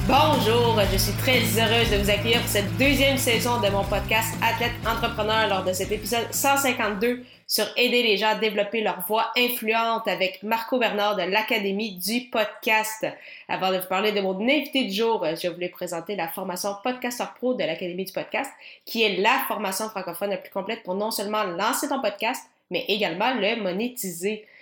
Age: 20-39